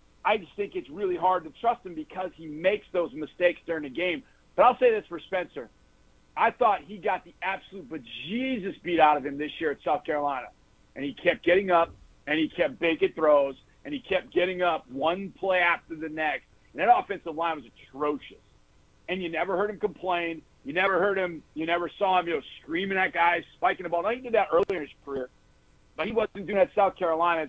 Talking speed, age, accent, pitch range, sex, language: 225 wpm, 50-69, American, 165-210 Hz, male, English